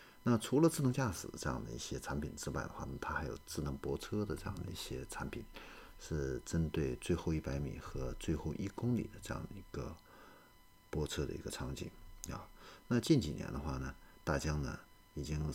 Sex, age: male, 50-69